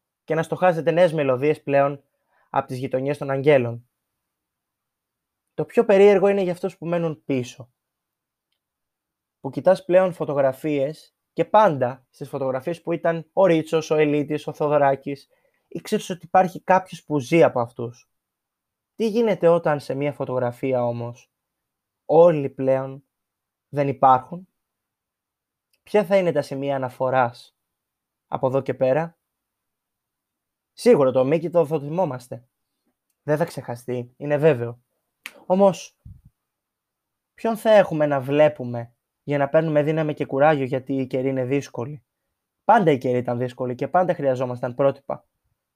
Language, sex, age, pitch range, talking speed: Greek, male, 20-39, 130-170 Hz, 135 wpm